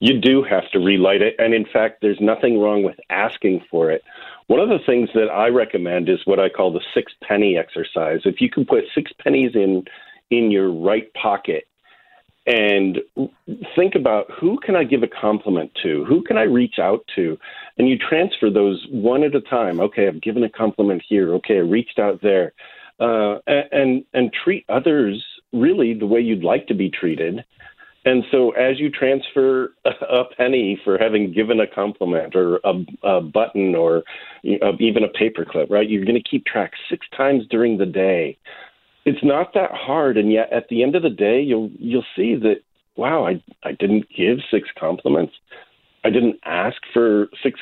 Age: 50-69